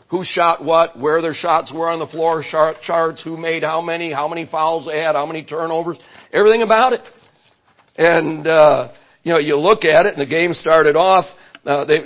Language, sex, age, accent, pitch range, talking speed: English, male, 60-79, American, 155-180 Hz, 200 wpm